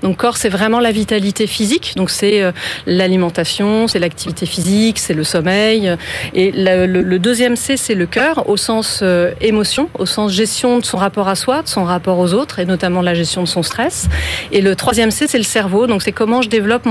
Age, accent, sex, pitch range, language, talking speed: 40-59, French, female, 180-230 Hz, French, 220 wpm